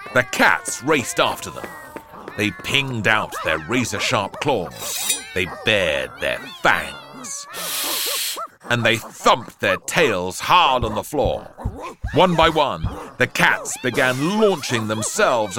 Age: 40-59